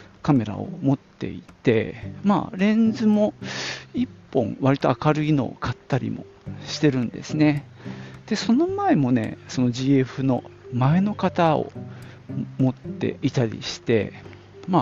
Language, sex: Japanese, male